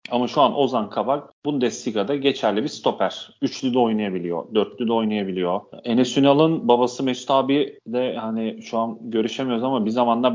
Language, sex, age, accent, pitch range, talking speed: Turkish, male, 40-59, native, 110-125 Hz, 160 wpm